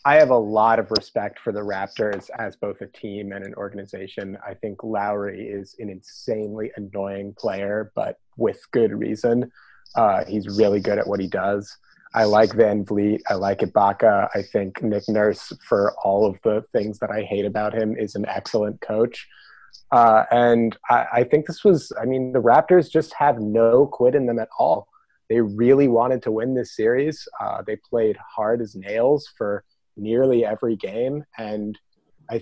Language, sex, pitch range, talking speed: English, male, 105-125 Hz, 185 wpm